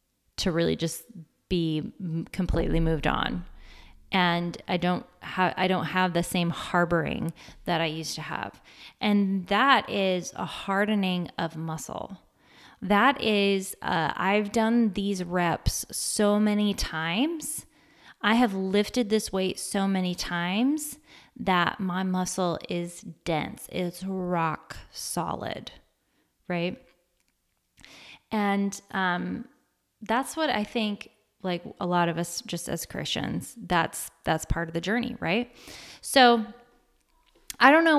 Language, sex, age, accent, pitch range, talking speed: English, female, 20-39, American, 175-225 Hz, 130 wpm